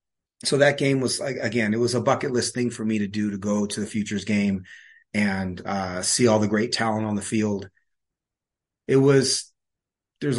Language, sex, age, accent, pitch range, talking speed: English, male, 30-49, American, 105-120 Hz, 200 wpm